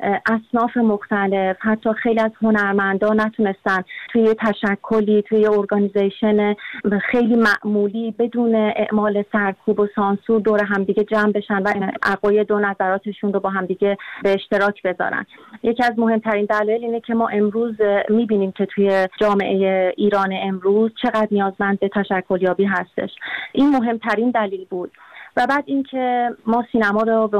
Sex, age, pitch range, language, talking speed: female, 30-49, 200-225 Hz, Persian, 140 wpm